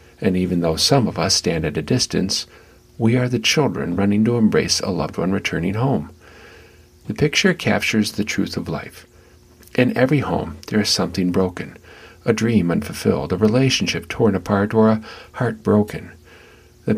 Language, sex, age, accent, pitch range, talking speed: English, male, 50-69, American, 90-110 Hz, 170 wpm